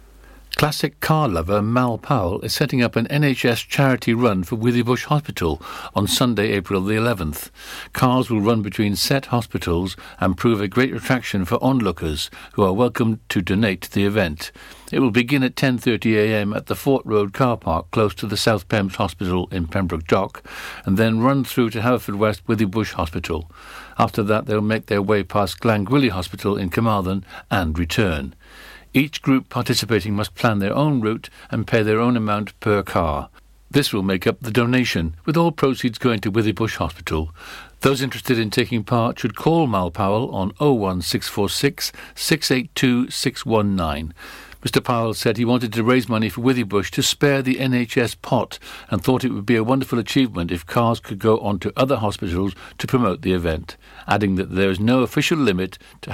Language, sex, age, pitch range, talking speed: English, male, 60-79, 95-125 Hz, 175 wpm